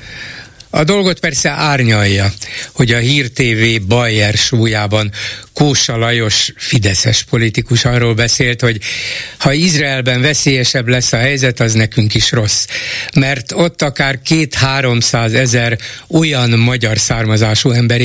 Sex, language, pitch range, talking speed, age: male, Hungarian, 110-140 Hz, 120 wpm, 60-79